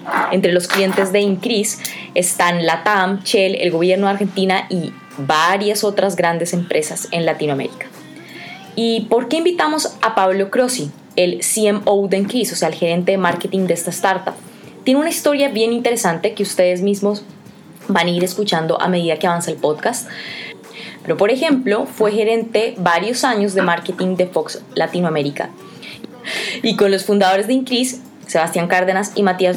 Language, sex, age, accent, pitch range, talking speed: Spanish, female, 20-39, Colombian, 180-225 Hz, 160 wpm